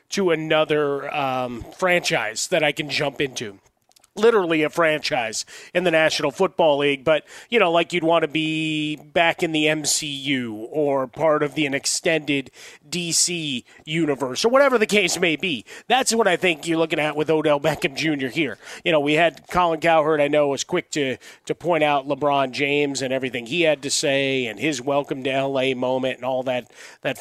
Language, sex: English, male